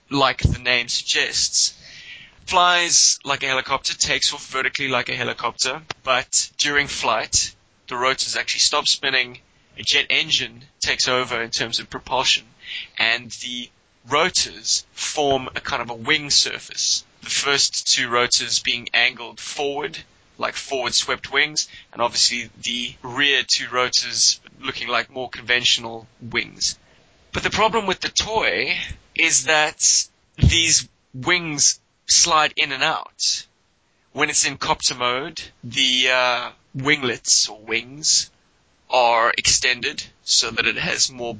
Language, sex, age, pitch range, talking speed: English, male, 20-39, 120-145 Hz, 135 wpm